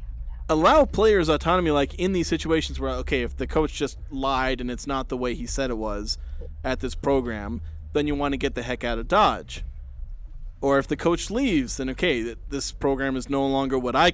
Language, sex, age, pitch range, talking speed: English, male, 30-49, 120-165 Hz, 210 wpm